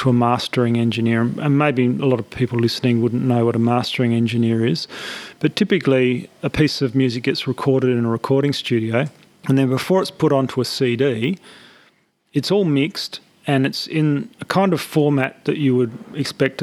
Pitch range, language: 125-145 Hz, English